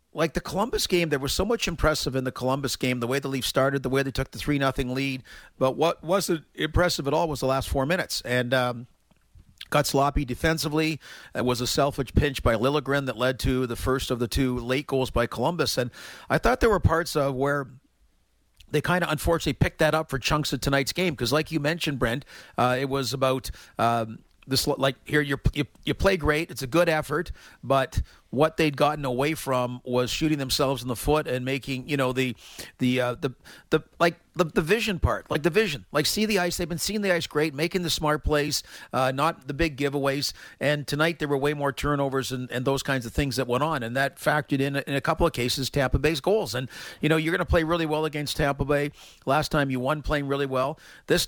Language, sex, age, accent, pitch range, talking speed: English, male, 40-59, American, 130-155 Hz, 235 wpm